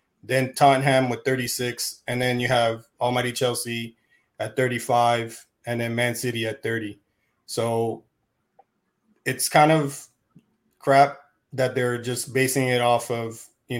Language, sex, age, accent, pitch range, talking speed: English, male, 20-39, American, 115-130 Hz, 135 wpm